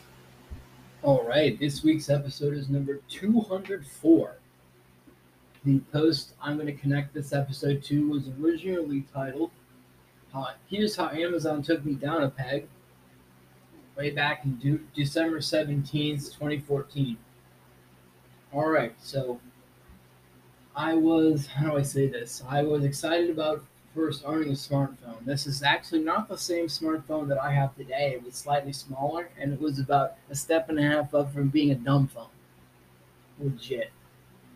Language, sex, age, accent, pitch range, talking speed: English, male, 20-39, American, 135-160 Hz, 150 wpm